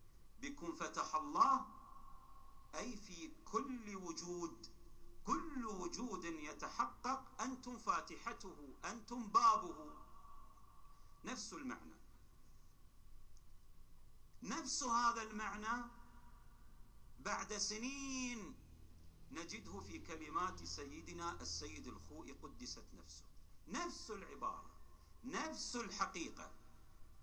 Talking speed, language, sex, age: 75 wpm, Arabic, male, 50-69